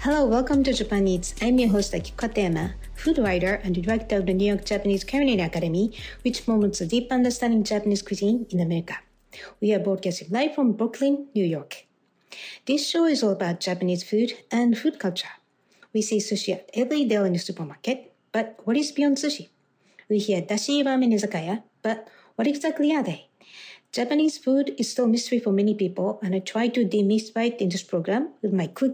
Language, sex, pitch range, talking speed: English, female, 190-255 Hz, 195 wpm